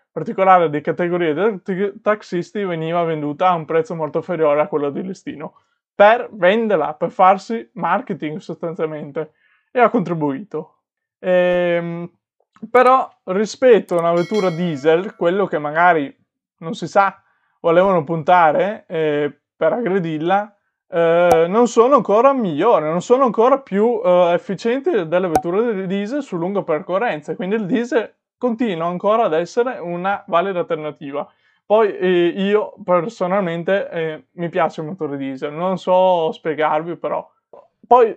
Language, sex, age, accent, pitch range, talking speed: Italian, male, 20-39, native, 160-205 Hz, 135 wpm